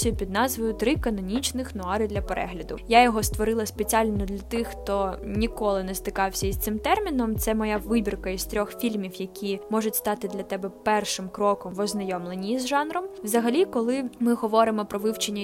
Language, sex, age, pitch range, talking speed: Ukrainian, female, 10-29, 195-225 Hz, 165 wpm